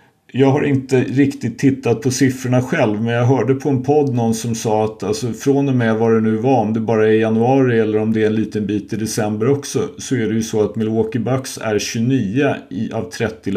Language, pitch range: Swedish, 105-130 Hz